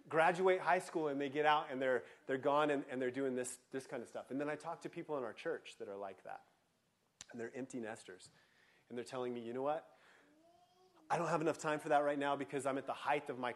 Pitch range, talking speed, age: 135-170 Hz, 265 wpm, 30-49